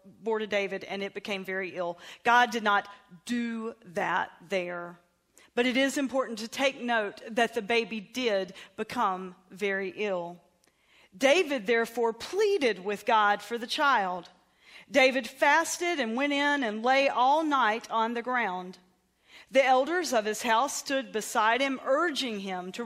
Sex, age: female, 40-59